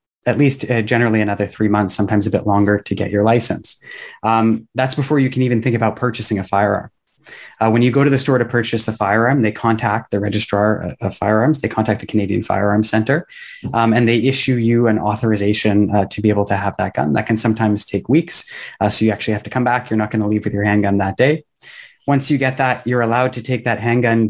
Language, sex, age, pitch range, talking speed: English, male, 20-39, 105-125 Hz, 235 wpm